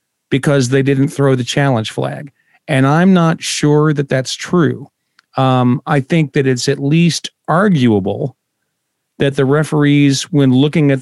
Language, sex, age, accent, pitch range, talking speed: English, male, 40-59, American, 125-155 Hz, 150 wpm